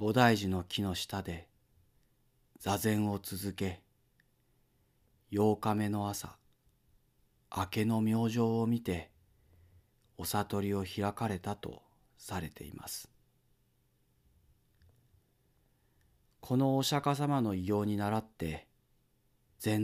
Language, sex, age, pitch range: Japanese, male, 40-59, 95-125 Hz